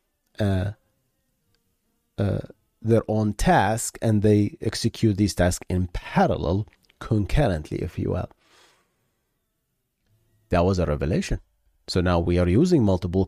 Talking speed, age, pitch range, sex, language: 120 wpm, 30-49, 85-110 Hz, male, English